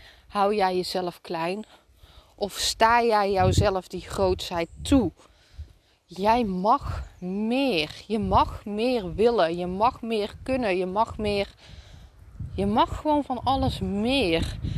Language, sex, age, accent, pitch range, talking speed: Dutch, female, 20-39, Dutch, 195-250 Hz, 125 wpm